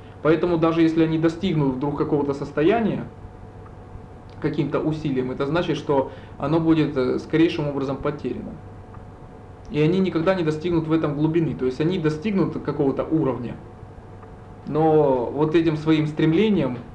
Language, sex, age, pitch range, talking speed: Russian, male, 20-39, 130-160 Hz, 130 wpm